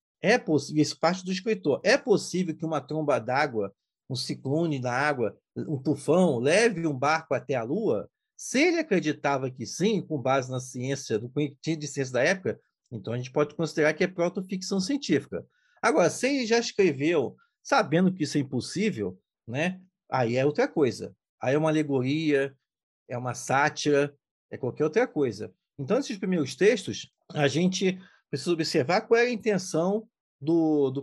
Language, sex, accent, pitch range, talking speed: Portuguese, male, Brazilian, 140-185 Hz, 170 wpm